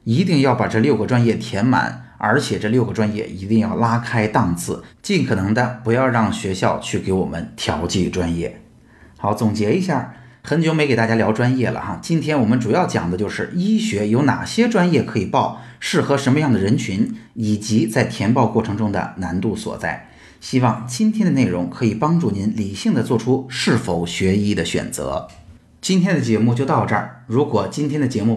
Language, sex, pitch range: Chinese, male, 110-150 Hz